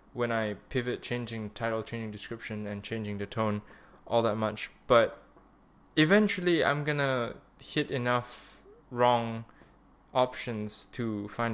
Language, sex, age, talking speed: English, male, 10-29, 135 wpm